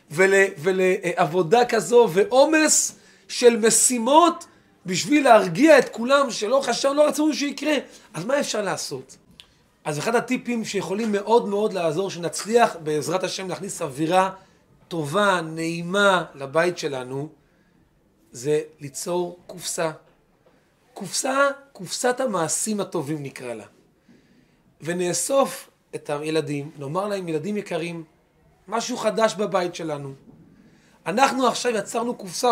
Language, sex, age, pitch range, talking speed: Hebrew, male, 30-49, 175-240 Hz, 110 wpm